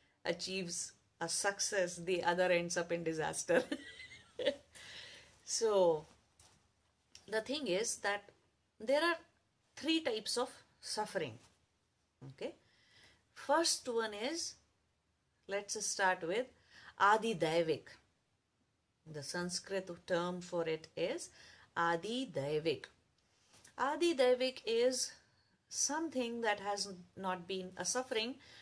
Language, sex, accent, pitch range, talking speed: English, female, Indian, 160-215 Hz, 95 wpm